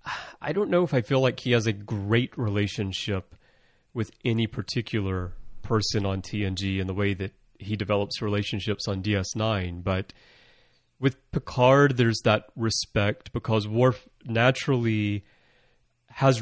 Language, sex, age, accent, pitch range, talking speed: English, male, 30-49, American, 100-120 Hz, 140 wpm